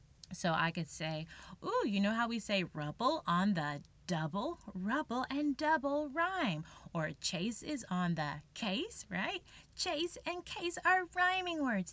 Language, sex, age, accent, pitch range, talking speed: English, female, 20-39, American, 170-260 Hz, 155 wpm